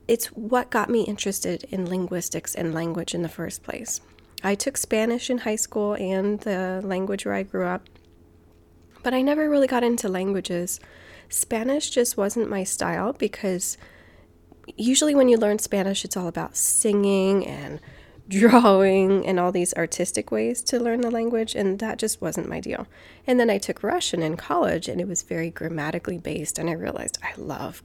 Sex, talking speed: female, 180 wpm